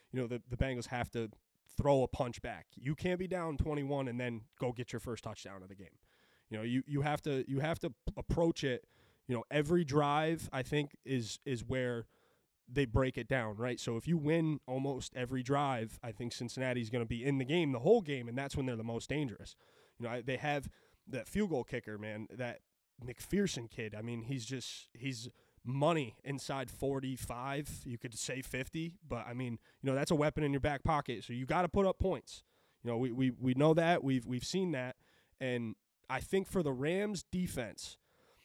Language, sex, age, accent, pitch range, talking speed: English, male, 20-39, American, 120-150 Hz, 220 wpm